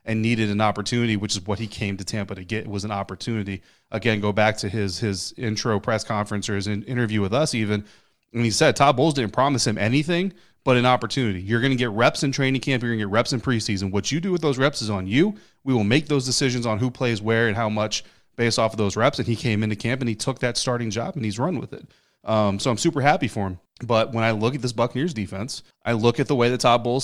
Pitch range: 105-125 Hz